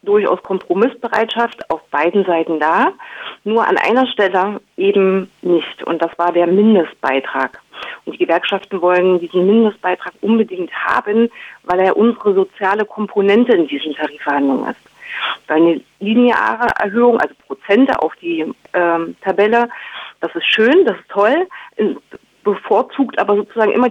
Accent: German